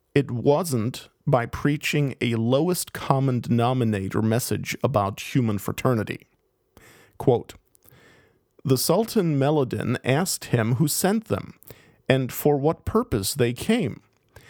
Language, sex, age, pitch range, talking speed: English, male, 40-59, 120-150 Hz, 110 wpm